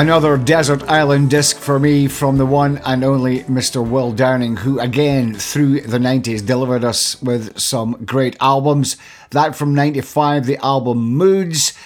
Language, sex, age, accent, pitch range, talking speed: English, male, 50-69, British, 125-155 Hz, 155 wpm